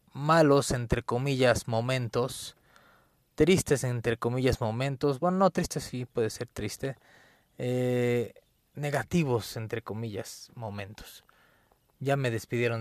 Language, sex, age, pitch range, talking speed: Spanish, male, 30-49, 115-150 Hz, 110 wpm